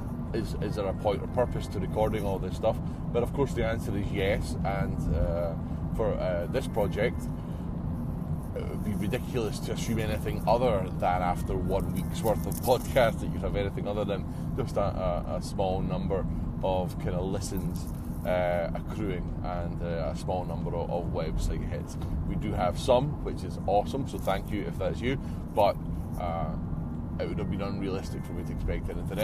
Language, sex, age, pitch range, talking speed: English, male, 30-49, 80-90 Hz, 190 wpm